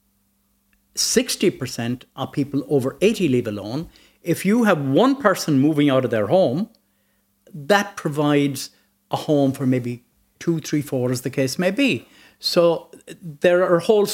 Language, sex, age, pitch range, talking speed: English, male, 60-79, 120-170 Hz, 145 wpm